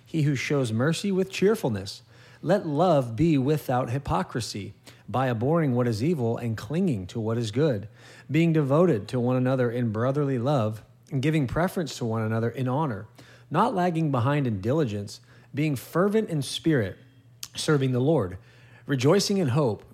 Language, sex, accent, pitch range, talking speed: English, male, American, 120-155 Hz, 160 wpm